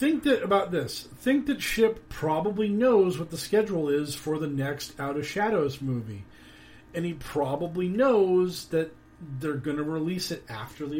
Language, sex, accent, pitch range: English, male, American, 135-180 Hz